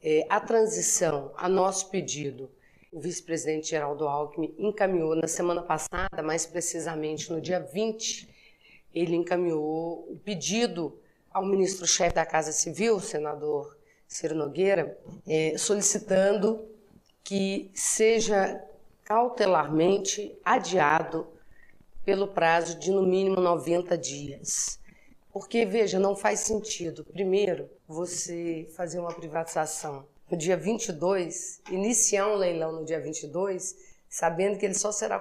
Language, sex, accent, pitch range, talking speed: Portuguese, female, Brazilian, 160-195 Hz, 115 wpm